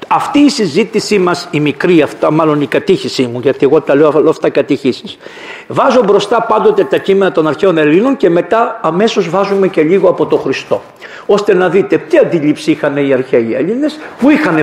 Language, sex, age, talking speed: Greek, male, 50-69, 185 wpm